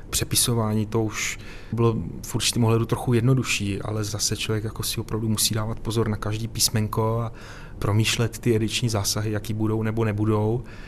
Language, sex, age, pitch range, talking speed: Czech, male, 30-49, 105-120 Hz, 160 wpm